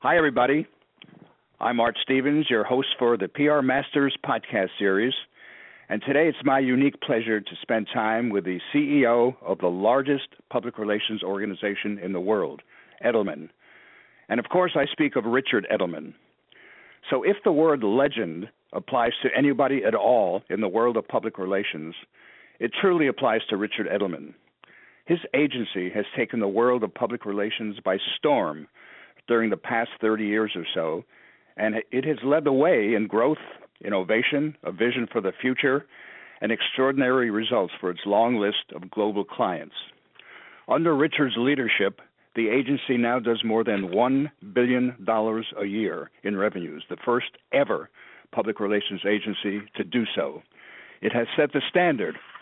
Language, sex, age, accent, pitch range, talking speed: English, male, 60-79, American, 105-135 Hz, 155 wpm